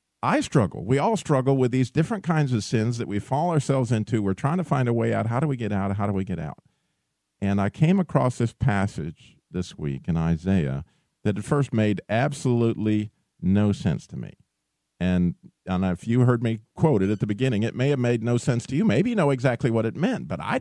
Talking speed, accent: 235 wpm, American